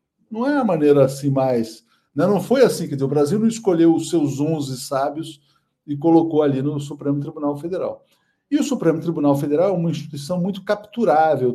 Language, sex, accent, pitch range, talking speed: Portuguese, male, Brazilian, 140-195 Hz, 185 wpm